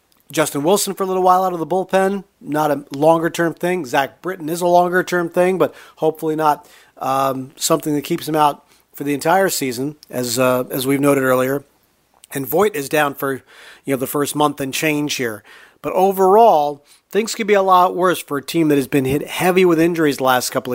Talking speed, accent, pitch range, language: 210 wpm, American, 140-185 Hz, English